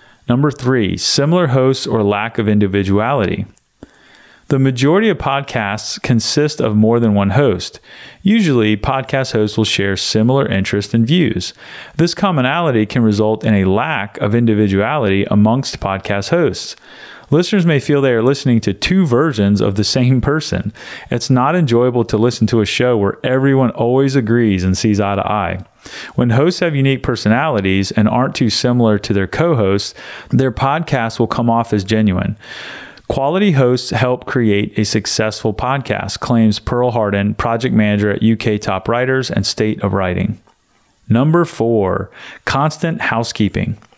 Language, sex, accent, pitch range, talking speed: English, male, American, 105-135 Hz, 155 wpm